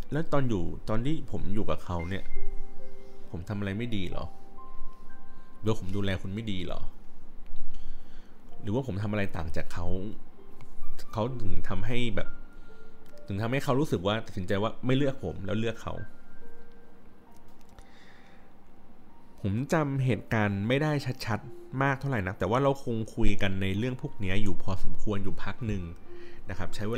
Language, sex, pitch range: Thai, male, 95-120 Hz